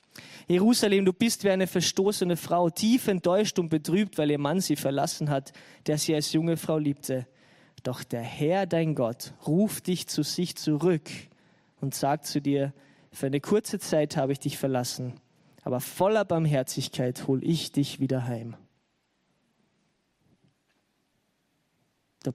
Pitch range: 140-180 Hz